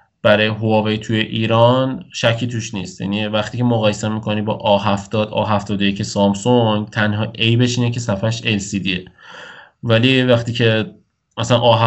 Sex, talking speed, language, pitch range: male, 135 wpm, Persian, 105-120 Hz